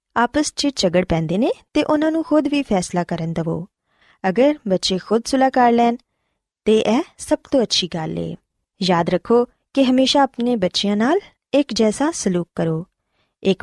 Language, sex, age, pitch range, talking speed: Punjabi, female, 20-39, 180-260 Hz, 165 wpm